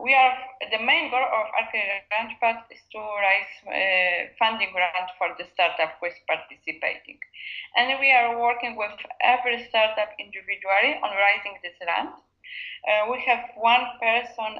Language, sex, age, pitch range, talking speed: English, female, 20-39, 195-250 Hz, 155 wpm